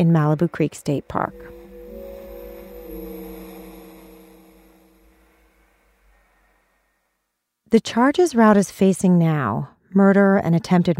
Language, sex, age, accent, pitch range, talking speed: English, female, 30-49, American, 155-215 Hz, 75 wpm